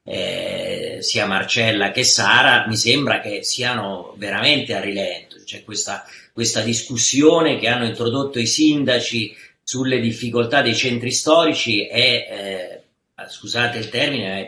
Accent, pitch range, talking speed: native, 115-145 Hz, 135 wpm